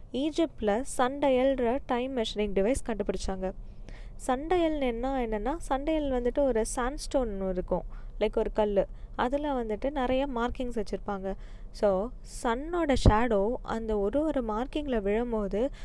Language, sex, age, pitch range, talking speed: Tamil, female, 20-39, 205-265 Hz, 105 wpm